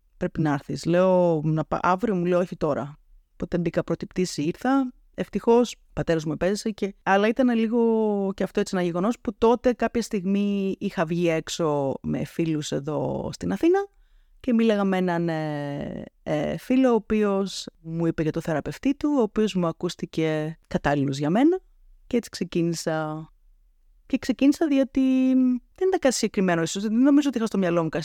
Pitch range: 155-225 Hz